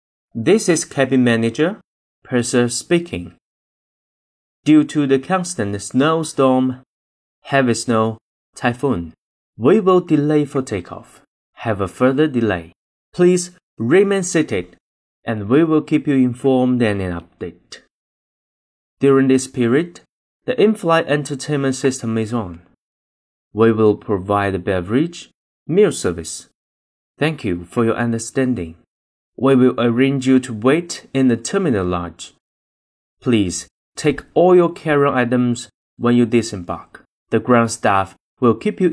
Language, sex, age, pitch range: Chinese, male, 30-49, 100-140 Hz